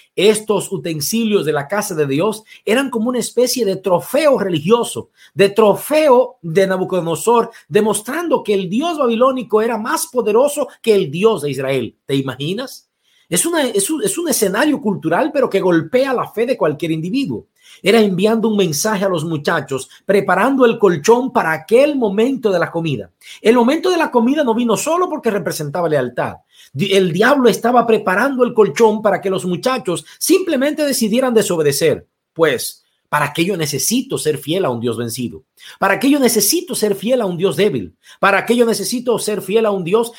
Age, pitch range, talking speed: 50-69, 170-240 Hz, 170 wpm